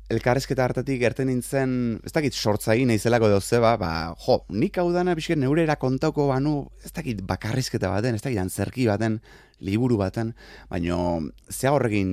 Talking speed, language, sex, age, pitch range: 160 wpm, Spanish, male, 20-39, 90-125 Hz